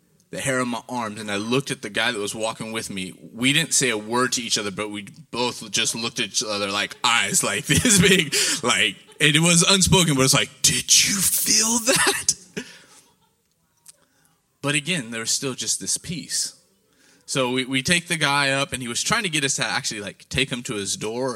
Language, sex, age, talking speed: English, male, 20-39, 220 wpm